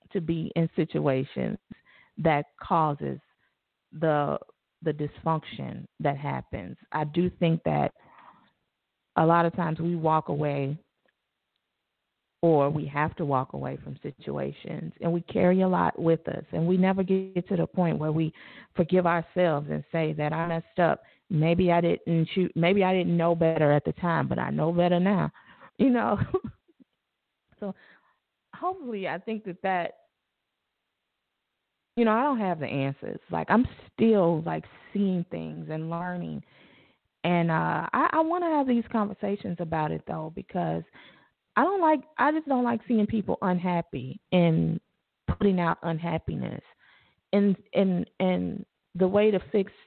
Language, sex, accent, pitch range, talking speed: English, female, American, 160-200 Hz, 155 wpm